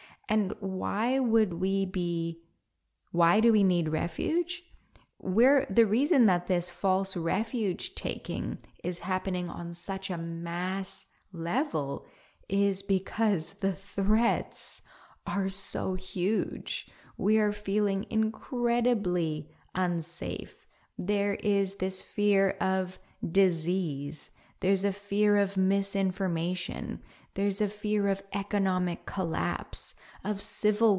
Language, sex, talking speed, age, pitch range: English, female, 110 wpm, 10-29, 180-210 Hz